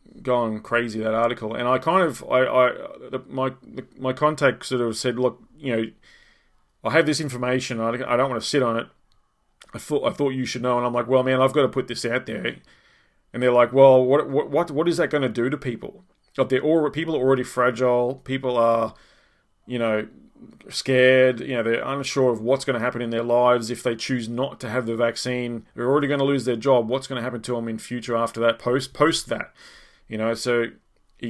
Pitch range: 115-130 Hz